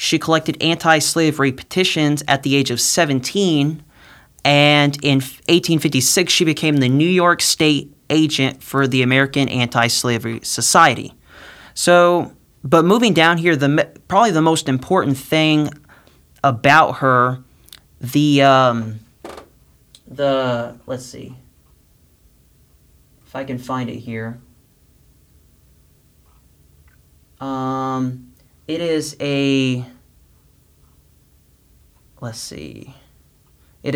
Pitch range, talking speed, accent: 115-155 Hz, 95 wpm, American